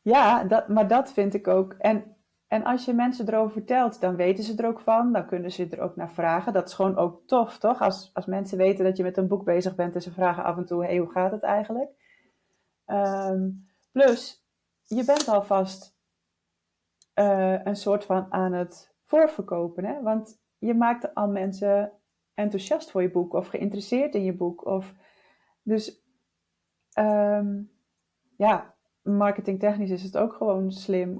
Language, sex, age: Dutch, female, 30-49